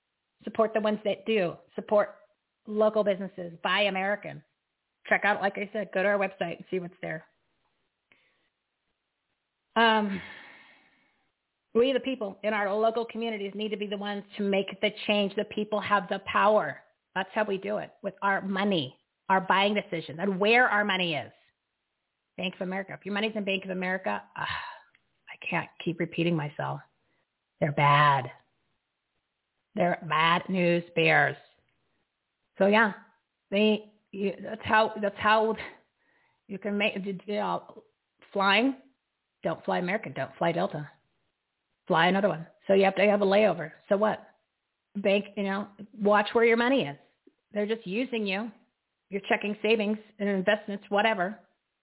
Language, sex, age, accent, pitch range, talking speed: English, female, 40-59, American, 190-220 Hz, 155 wpm